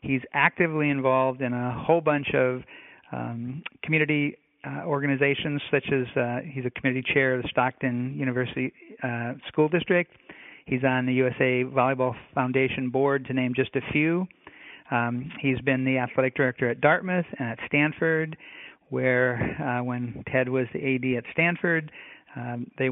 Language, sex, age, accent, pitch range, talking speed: English, male, 50-69, American, 125-140 Hz, 155 wpm